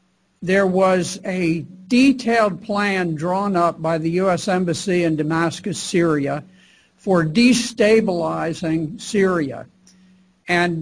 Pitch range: 170-195 Hz